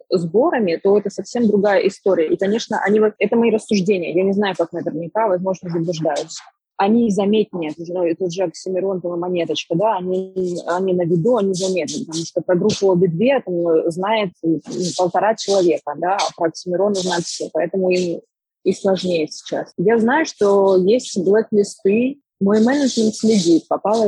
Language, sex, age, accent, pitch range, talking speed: Russian, female, 20-39, native, 175-215 Hz, 155 wpm